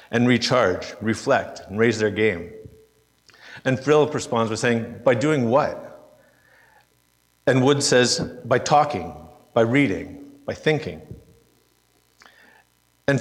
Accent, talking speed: American, 115 wpm